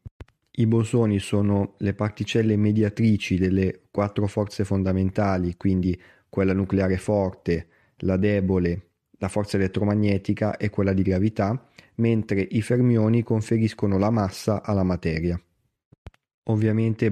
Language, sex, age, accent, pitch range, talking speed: Italian, male, 20-39, native, 95-110 Hz, 110 wpm